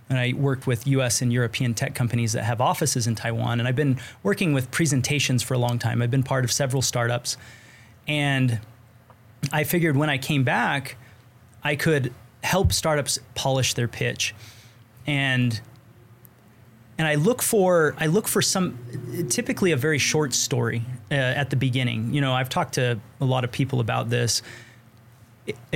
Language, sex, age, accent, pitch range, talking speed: English, male, 30-49, American, 120-145 Hz, 170 wpm